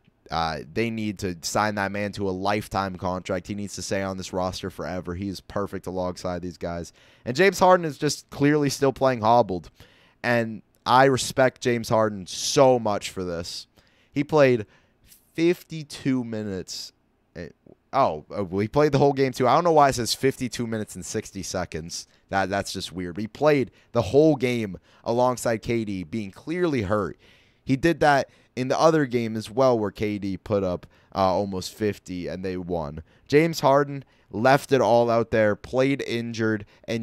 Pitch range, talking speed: 95-125 Hz, 175 wpm